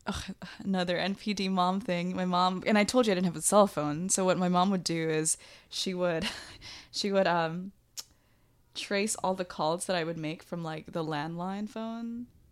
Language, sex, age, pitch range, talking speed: English, female, 20-39, 160-200 Hz, 200 wpm